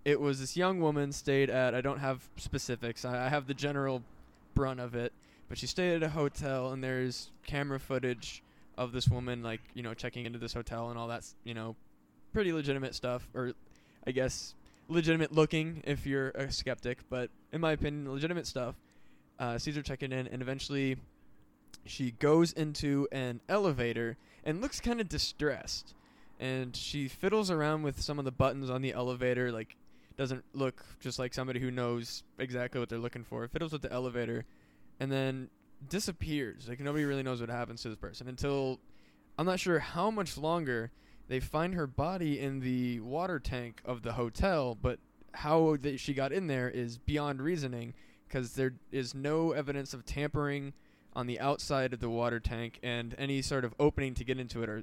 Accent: American